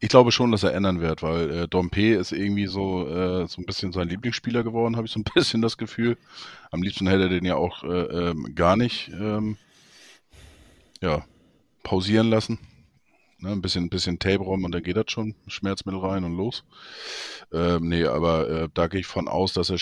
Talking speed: 205 wpm